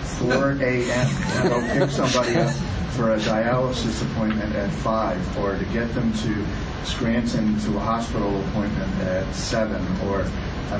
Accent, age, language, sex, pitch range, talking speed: American, 40-59, English, male, 95-120 Hz, 150 wpm